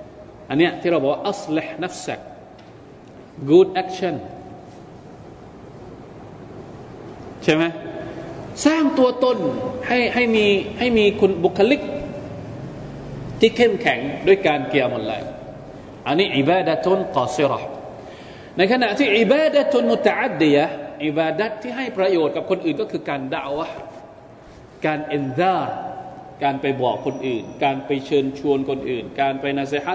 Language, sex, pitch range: Thai, male, 140-205 Hz